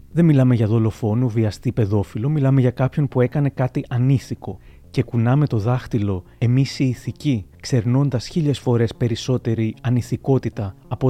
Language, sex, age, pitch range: Greek, male, 30-49, 115-135 Hz